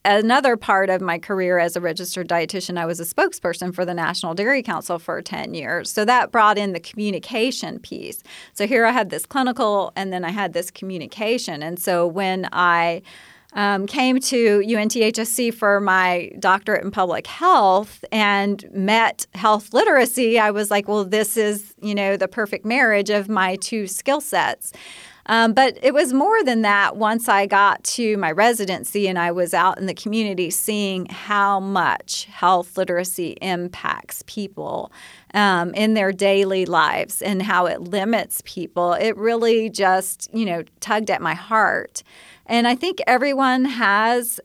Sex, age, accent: female, 30-49, American